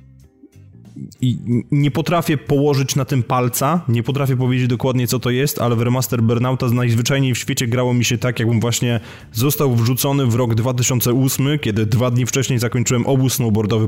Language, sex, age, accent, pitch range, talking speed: Polish, male, 20-39, native, 110-130 Hz, 170 wpm